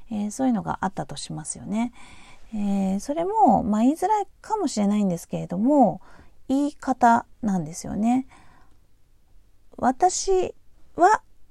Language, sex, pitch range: Japanese, female, 170-250 Hz